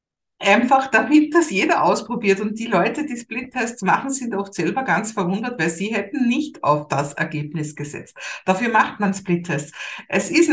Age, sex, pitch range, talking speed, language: 50-69, female, 180-235 Hz, 170 wpm, German